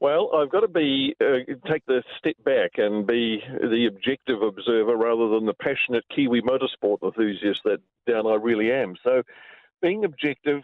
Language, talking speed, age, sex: English, 170 wpm, 50-69, male